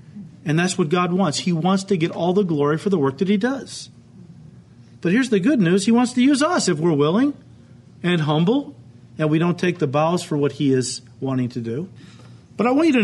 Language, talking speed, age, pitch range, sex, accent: English, 235 wpm, 40-59, 150-205 Hz, male, American